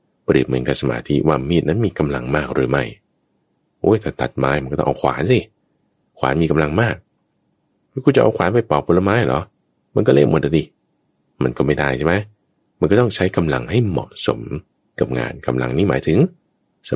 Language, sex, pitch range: Thai, male, 70-105 Hz